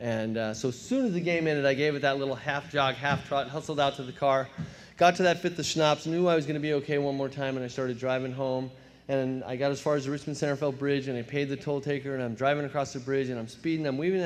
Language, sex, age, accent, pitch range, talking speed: English, male, 30-49, American, 125-145 Hz, 300 wpm